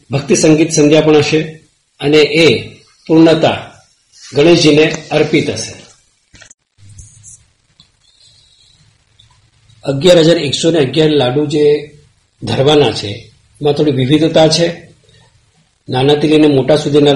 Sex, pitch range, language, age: male, 115-150 Hz, Gujarati, 50-69